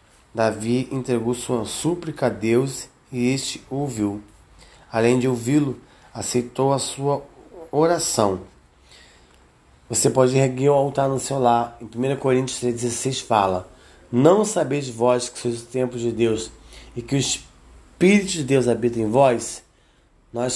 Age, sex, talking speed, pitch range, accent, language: 20-39, male, 140 wpm, 115-135 Hz, Brazilian, Portuguese